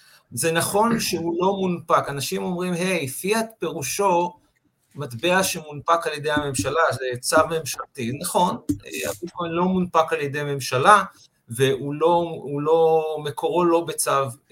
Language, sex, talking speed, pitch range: English, male, 140 wpm, 135-175 Hz